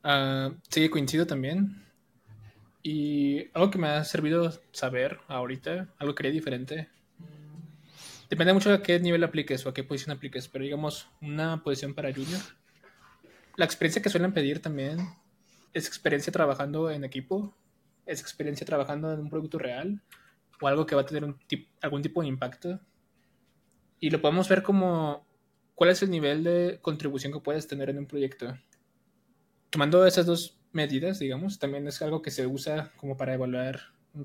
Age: 20-39